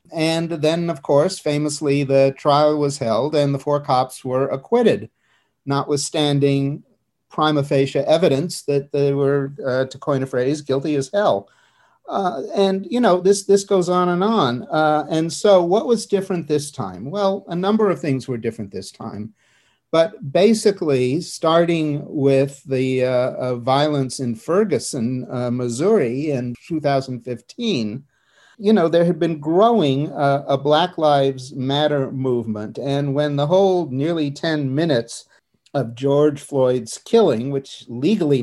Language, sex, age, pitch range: English, male, 50-69, 130-165 Hz